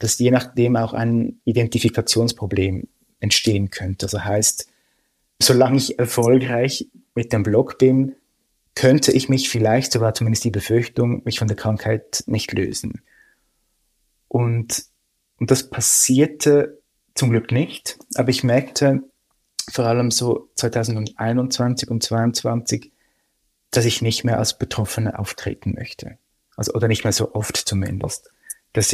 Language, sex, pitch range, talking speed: German, male, 110-125 Hz, 135 wpm